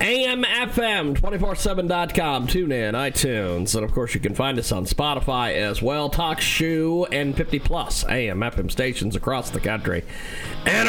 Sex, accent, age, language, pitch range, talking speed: male, American, 40-59, English, 130-200 Hz, 145 wpm